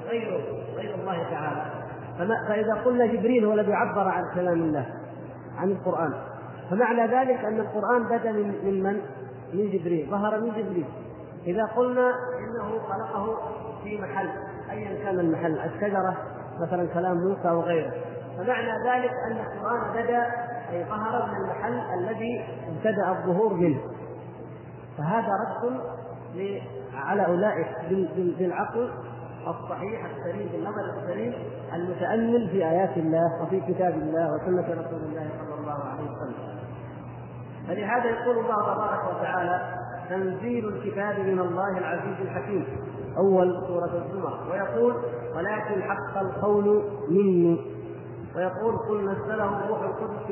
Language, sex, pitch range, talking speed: Arabic, male, 170-215 Hz, 120 wpm